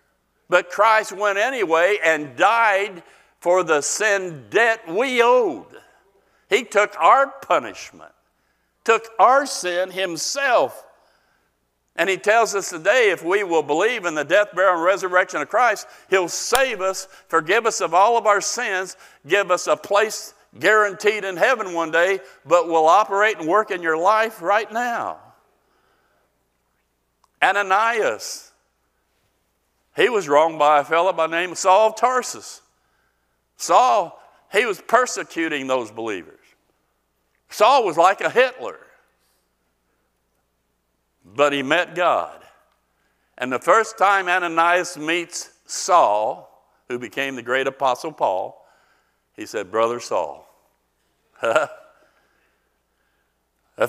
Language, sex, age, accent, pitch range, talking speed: English, male, 60-79, American, 120-205 Hz, 125 wpm